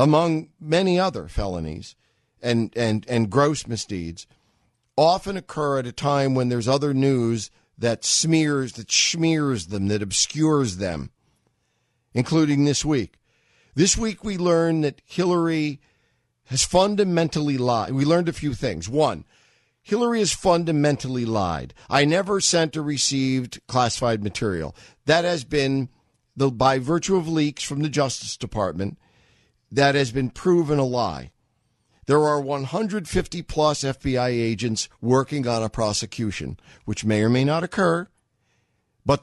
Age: 50-69